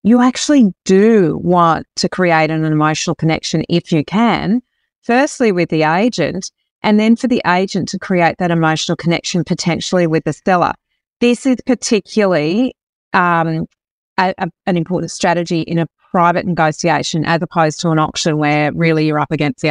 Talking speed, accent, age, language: 160 wpm, Australian, 30-49, English